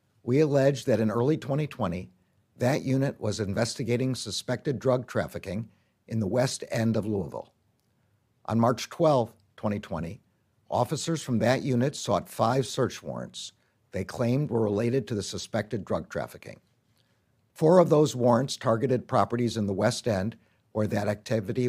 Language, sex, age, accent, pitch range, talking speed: English, male, 60-79, American, 105-130 Hz, 145 wpm